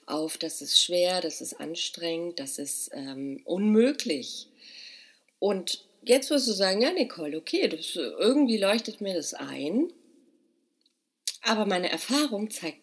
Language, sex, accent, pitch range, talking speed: German, female, German, 175-250 Hz, 125 wpm